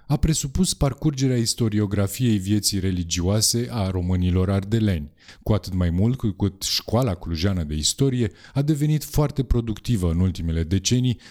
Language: Romanian